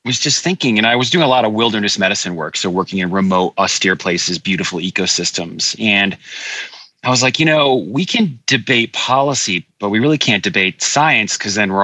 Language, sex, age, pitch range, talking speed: English, male, 30-49, 95-125 Hz, 205 wpm